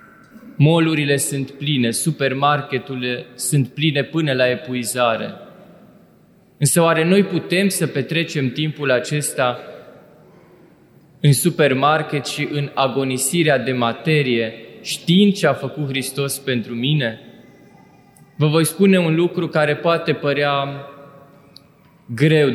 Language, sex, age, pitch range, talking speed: Romanian, male, 20-39, 130-165 Hz, 105 wpm